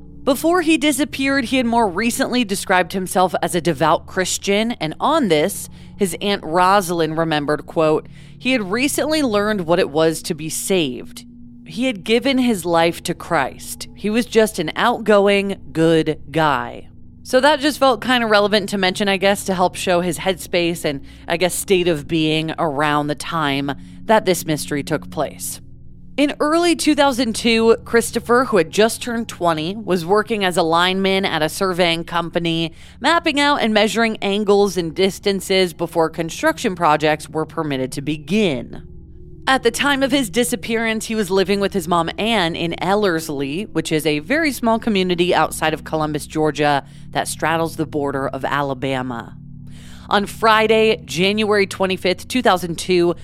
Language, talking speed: English, 160 wpm